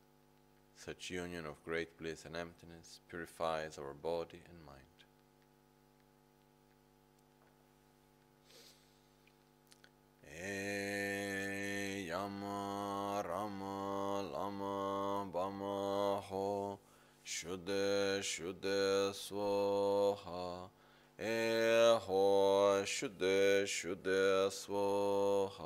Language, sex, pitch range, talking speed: Italian, male, 95-100 Hz, 30 wpm